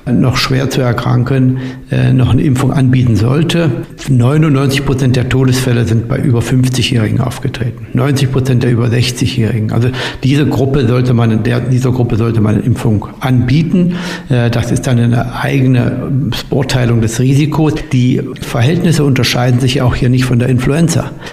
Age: 60-79